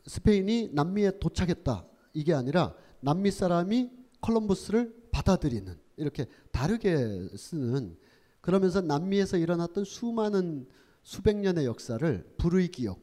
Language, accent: Korean, native